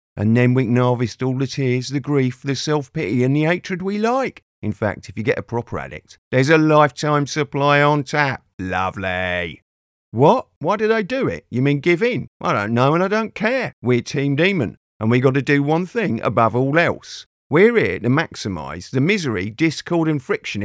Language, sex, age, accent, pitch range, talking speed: English, male, 50-69, British, 115-160 Hz, 205 wpm